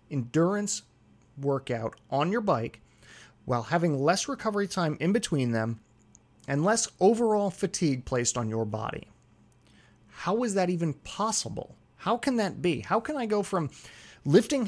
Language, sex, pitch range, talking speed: English, male, 115-185 Hz, 145 wpm